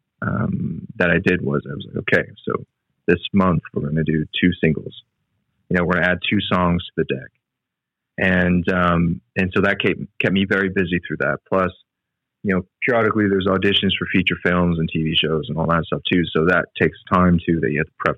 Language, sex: English, male